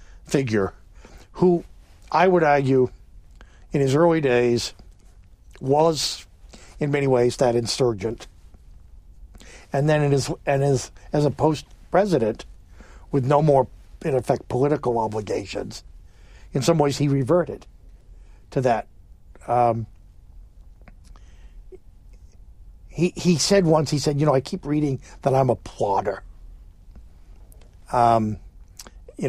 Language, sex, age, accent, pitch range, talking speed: English, male, 60-79, American, 95-150 Hz, 115 wpm